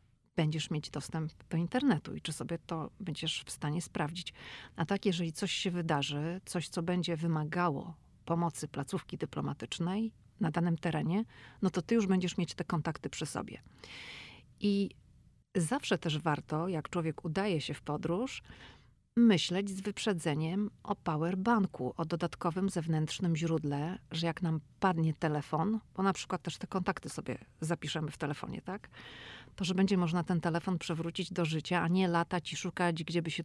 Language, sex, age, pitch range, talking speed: Polish, female, 40-59, 155-185 Hz, 165 wpm